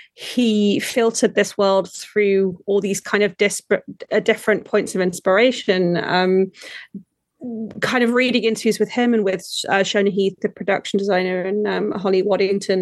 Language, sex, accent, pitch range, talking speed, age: English, female, British, 190-220 Hz, 160 wpm, 30-49